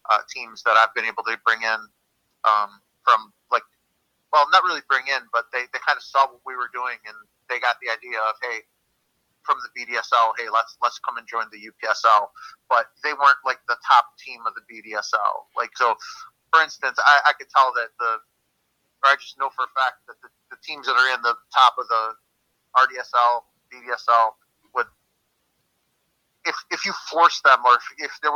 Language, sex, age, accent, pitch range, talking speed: English, male, 30-49, American, 115-150 Hz, 200 wpm